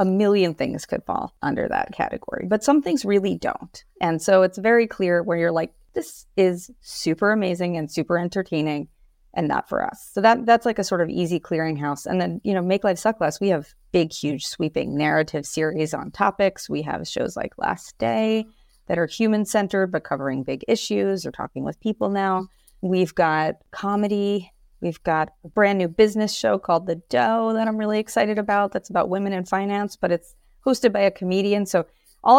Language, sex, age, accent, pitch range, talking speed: English, female, 30-49, American, 160-200 Hz, 195 wpm